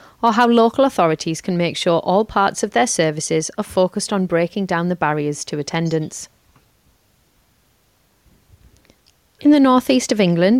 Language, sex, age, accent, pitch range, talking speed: English, female, 30-49, British, 170-230 Hz, 145 wpm